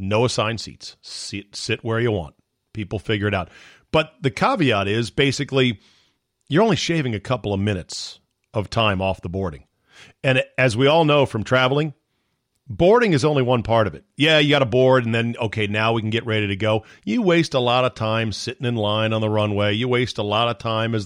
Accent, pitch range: American, 105-135 Hz